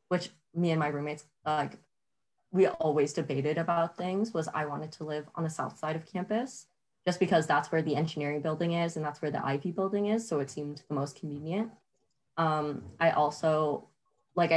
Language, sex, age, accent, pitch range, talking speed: English, female, 20-39, American, 150-190 Hz, 195 wpm